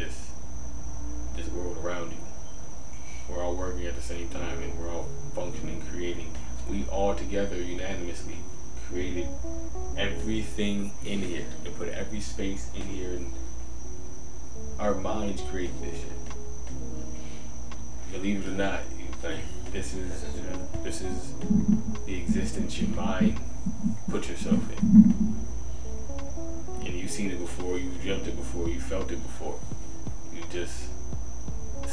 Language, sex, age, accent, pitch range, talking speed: English, male, 20-39, American, 70-95 Hz, 130 wpm